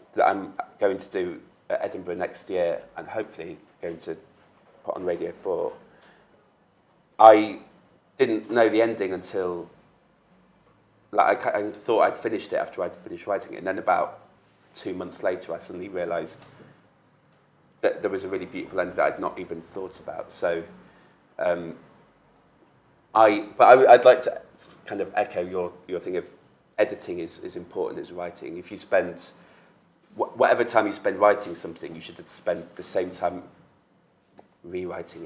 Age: 30-49